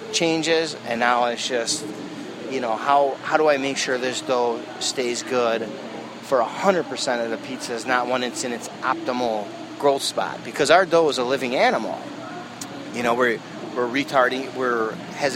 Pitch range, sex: 120-160 Hz, male